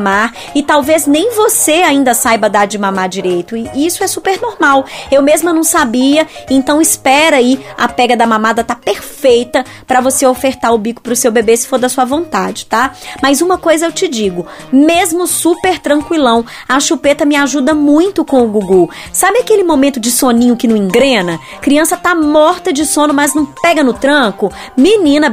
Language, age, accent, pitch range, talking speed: Portuguese, 20-39, Brazilian, 240-310 Hz, 185 wpm